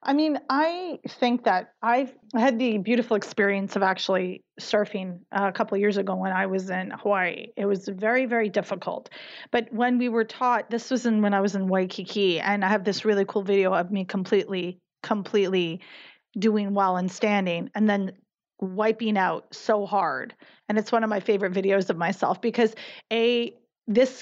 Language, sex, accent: English, female, American